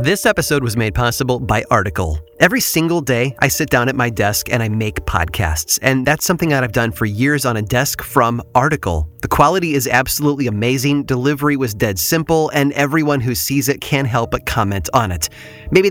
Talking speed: 205 wpm